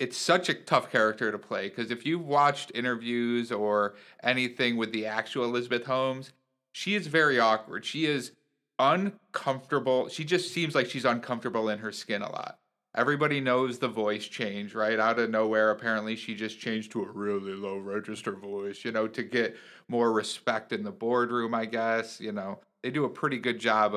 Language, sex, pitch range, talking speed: English, male, 110-140 Hz, 190 wpm